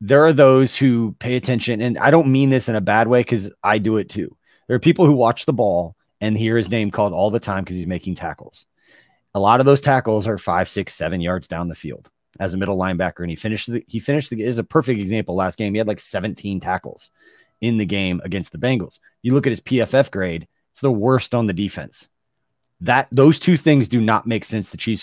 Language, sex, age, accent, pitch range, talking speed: English, male, 30-49, American, 100-130 Hz, 245 wpm